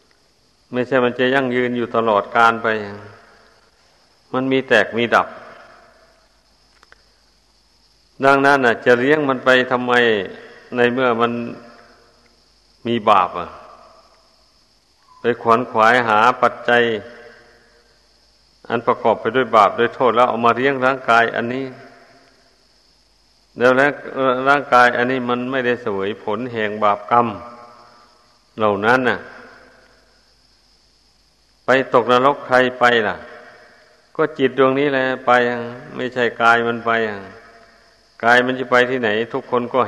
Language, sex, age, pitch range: Thai, male, 60-79, 115-130 Hz